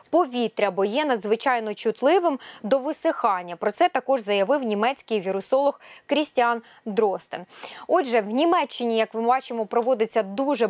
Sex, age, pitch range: female, 20-39, 230-280 Hz